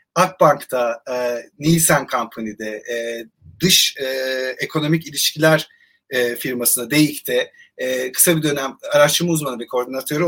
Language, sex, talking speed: Turkish, male, 115 wpm